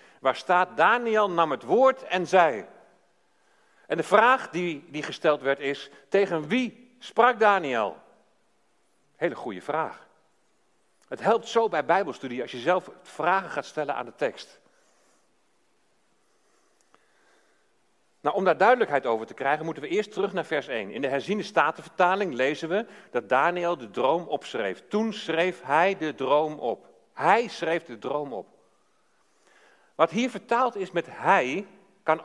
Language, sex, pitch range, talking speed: Dutch, male, 155-210 Hz, 150 wpm